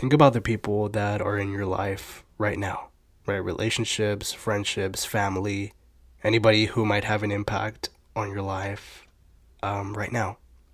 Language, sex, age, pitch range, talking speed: English, male, 20-39, 95-115 Hz, 150 wpm